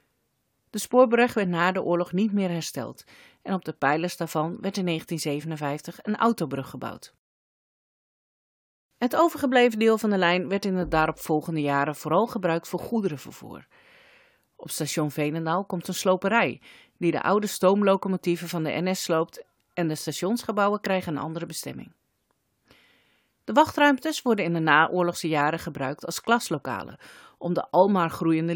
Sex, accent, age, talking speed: female, Dutch, 40-59, 150 wpm